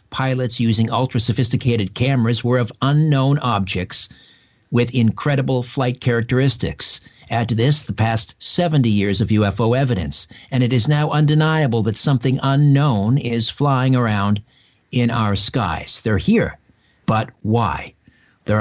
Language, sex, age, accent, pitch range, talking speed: English, male, 50-69, American, 110-135 Hz, 135 wpm